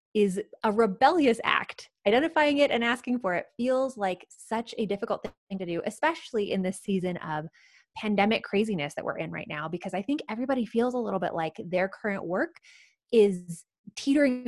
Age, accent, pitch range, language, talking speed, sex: 20-39, American, 185-235 Hz, English, 180 wpm, female